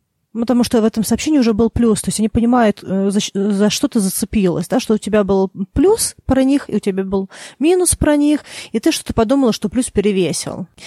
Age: 20-39